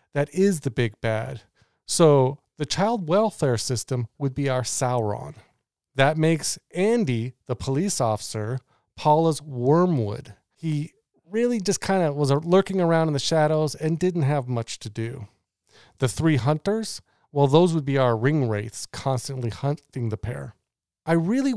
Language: English